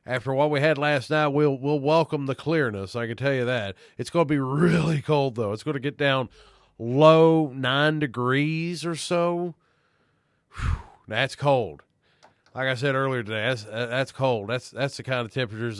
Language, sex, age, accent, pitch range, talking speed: English, male, 40-59, American, 115-145 Hz, 190 wpm